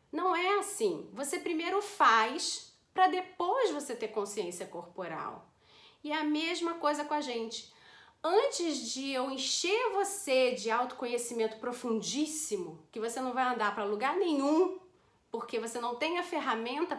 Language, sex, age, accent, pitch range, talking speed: Portuguese, female, 40-59, Brazilian, 235-345 Hz, 150 wpm